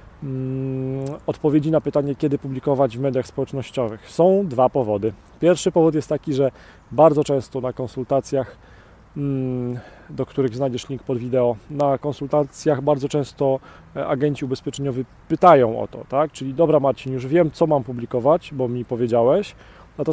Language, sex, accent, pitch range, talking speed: Polish, male, native, 130-155 Hz, 140 wpm